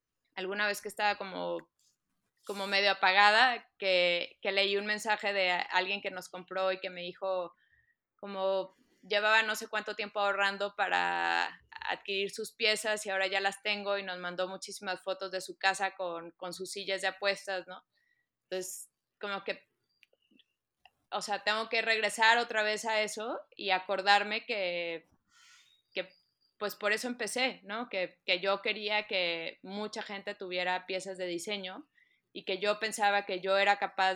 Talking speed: 160 wpm